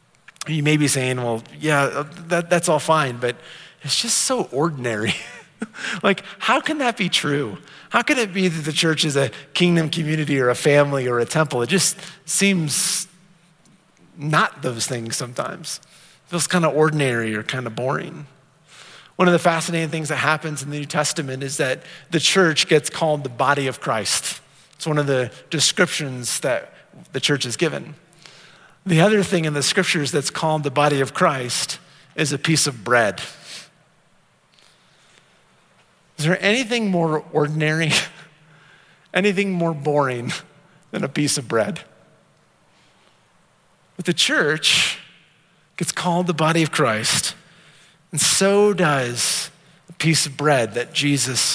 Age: 30-49